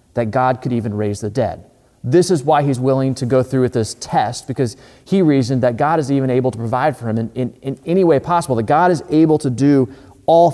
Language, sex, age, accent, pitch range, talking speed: English, male, 30-49, American, 110-145 Hz, 245 wpm